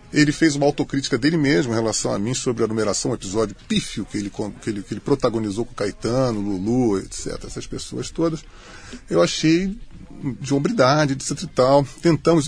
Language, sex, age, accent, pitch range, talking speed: Portuguese, male, 20-39, Brazilian, 125-165 Hz, 190 wpm